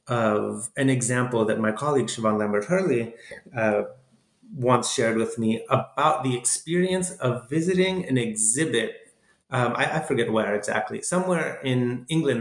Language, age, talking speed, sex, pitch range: English, 30-49, 145 wpm, male, 115-150 Hz